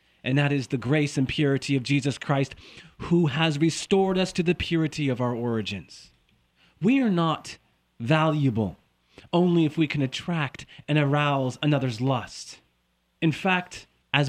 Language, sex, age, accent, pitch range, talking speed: English, male, 30-49, American, 130-165 Hz, 150 wpm